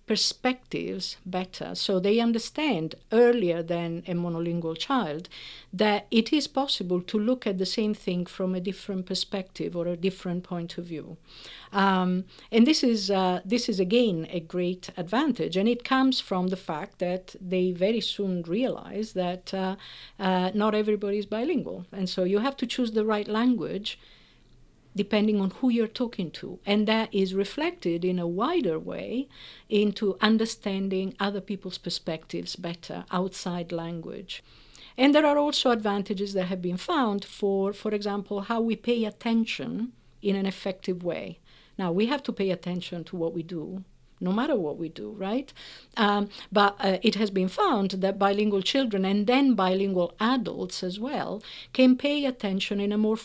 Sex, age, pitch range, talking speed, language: female, 50-69, 185-225 Hz, 165 wpm, English